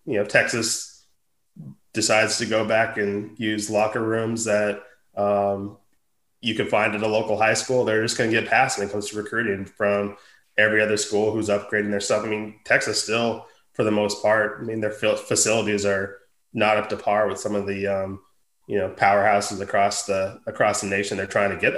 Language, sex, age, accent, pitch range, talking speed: English, male, 20-39, American, 100-110 Hz, 205 wpm